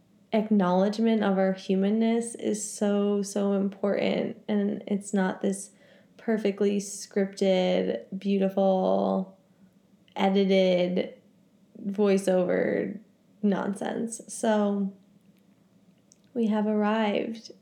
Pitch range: 195-230 Hz